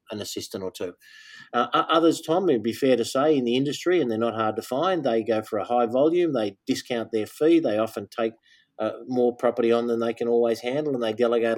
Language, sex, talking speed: English, male, 240 wpm